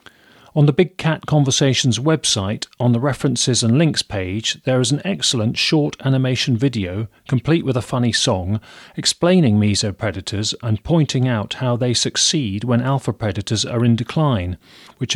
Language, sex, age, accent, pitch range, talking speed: English, male, 40-59, British, 115-145 Hz, 155 wpm